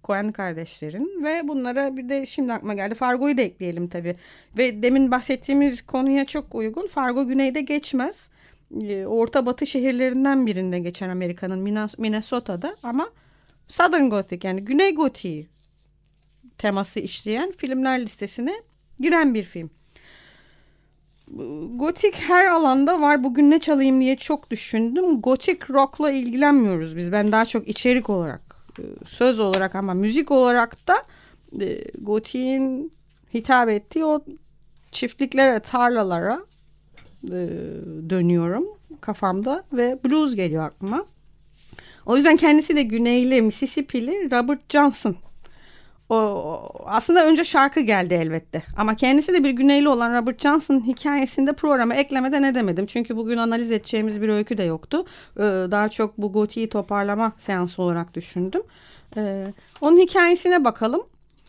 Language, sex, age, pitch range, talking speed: Turkish, female, 30-49, 210-290 Hz, 125 wpm